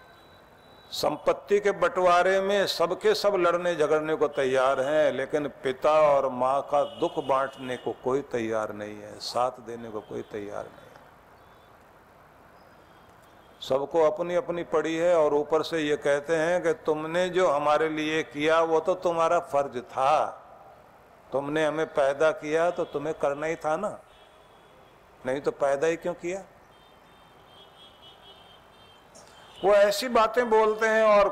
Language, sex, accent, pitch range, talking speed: Hindi, male, native, 145-175 Hz, 140 wpm